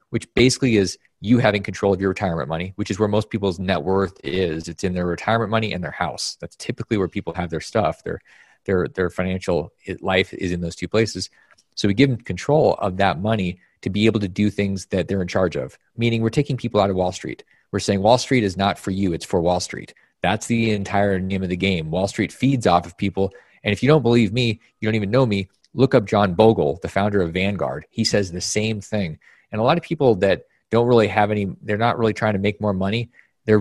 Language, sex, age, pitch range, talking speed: English, male, 30-49, 95-115 Hz, 245 wpm